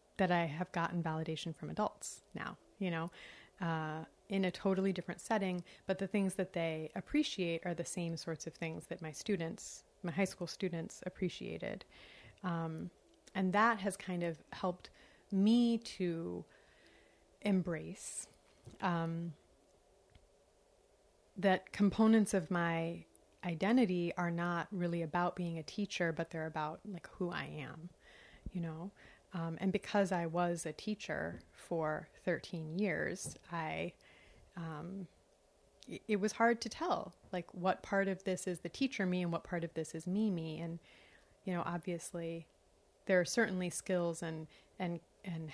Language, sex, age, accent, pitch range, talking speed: English, female, 30-49, American, 165-195 Hz, 150 wpm